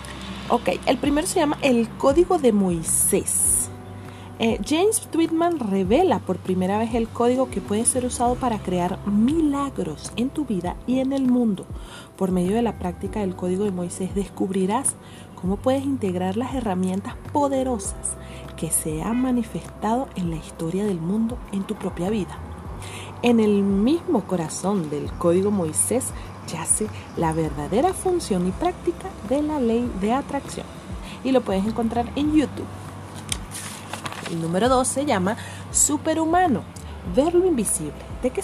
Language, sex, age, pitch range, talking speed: Spanish, female, 40-59, 170-255 Hz, 150 wpm